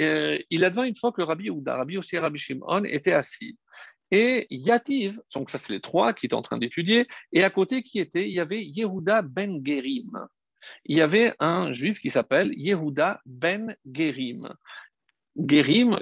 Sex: male